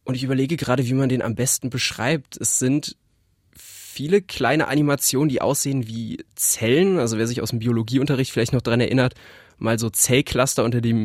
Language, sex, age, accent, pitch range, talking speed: German, male, 20-39, German, 120-140 Hz, 185 wpm